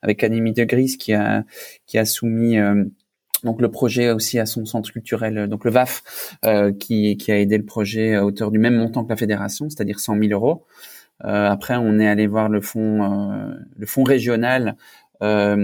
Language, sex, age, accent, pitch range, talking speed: English, male, 20-39, French, 105-115 Hz, 200 wpm